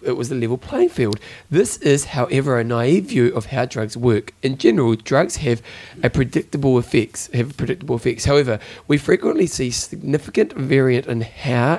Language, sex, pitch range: English, male, 115-145 Hz